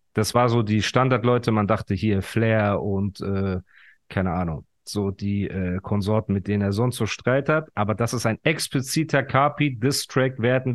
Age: 40-59